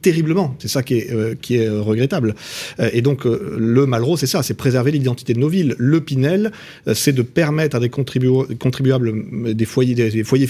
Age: 40-59